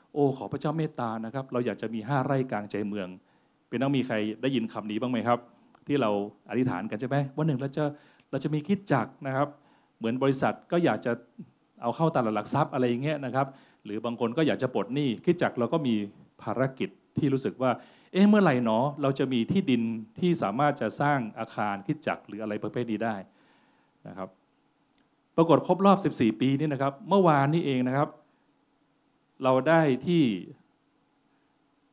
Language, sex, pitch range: Thai, male, 120-160 Hz